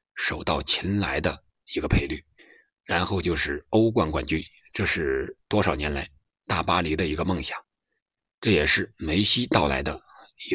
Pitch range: 80-100 Hz